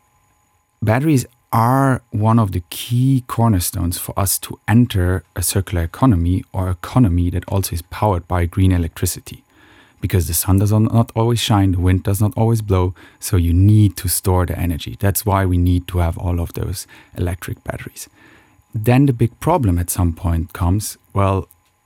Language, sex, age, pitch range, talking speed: English, male, 30-49, 90-105 Hz, 175 wpm